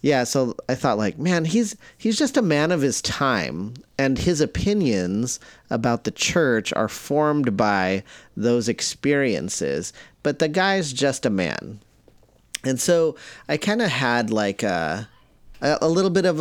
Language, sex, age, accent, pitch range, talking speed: English, male, 30-49, American, 105-145 Hz, 155 wpm